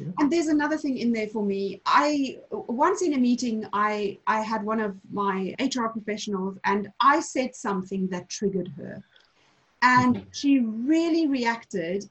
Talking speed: 160 wpm